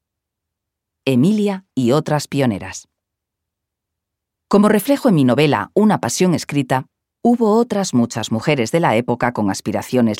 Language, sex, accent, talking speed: Spanish, female, Spanish, 125 wpm